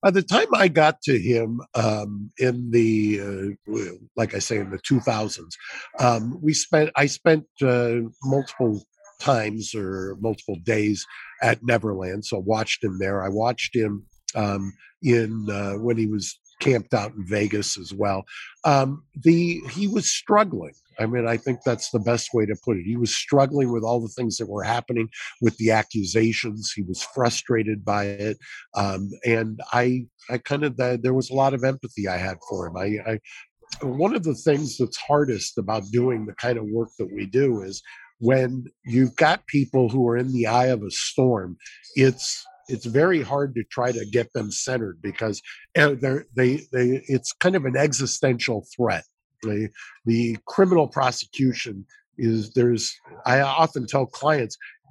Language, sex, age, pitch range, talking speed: English, male, 50-69, 110-135 Hz, 175 wpm